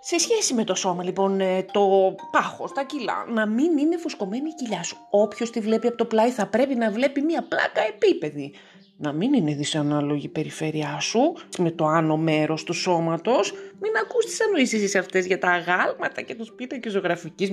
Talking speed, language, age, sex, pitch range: 190 wpm, Greek, 30-49, female, 175-260 Hz